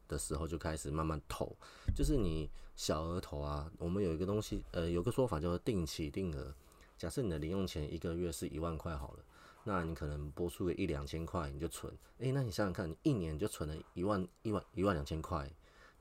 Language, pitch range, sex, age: Chinese, 75-95 Hz, male, 30-49